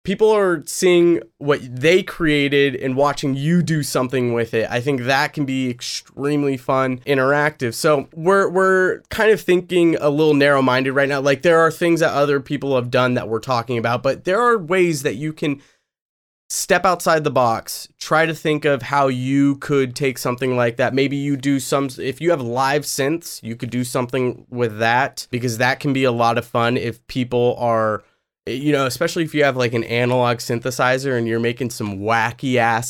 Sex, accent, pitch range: male, American, 120-145 Hz